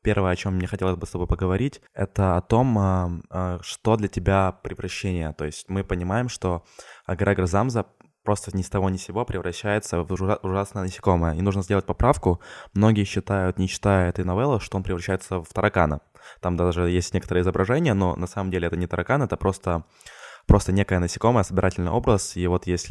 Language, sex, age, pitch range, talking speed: Ukrainian, male, 20-39, 85-100 Hz, 185 wpm